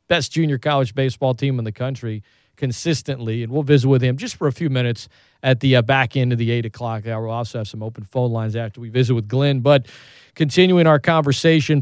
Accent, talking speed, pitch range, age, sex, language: American, 230 wpm, 120-140 Hz, 40-59, male, English